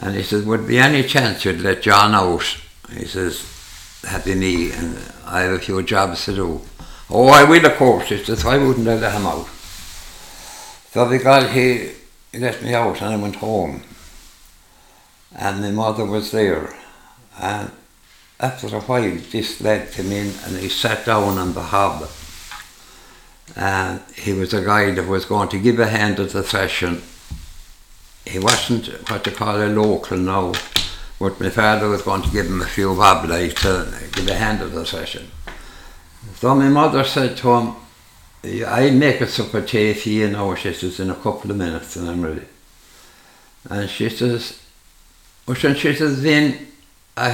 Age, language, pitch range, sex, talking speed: 60-79, English, 90-115 Hz, male, 180 wpm